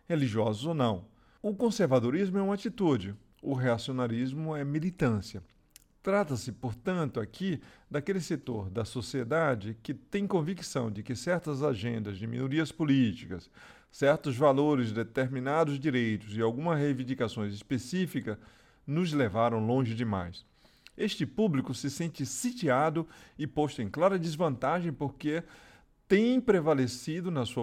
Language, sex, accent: Portuguese, male, Brazilian